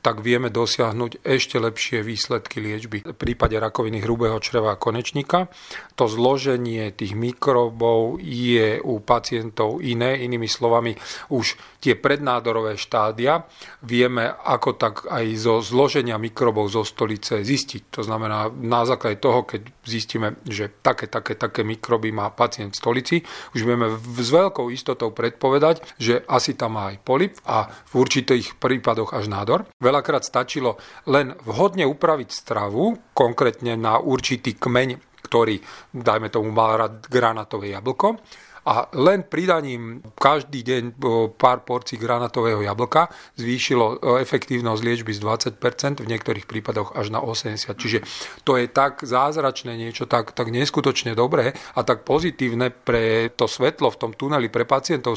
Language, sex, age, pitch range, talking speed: Slovak, male, 40-59, 115-130 Hz, 140 wpm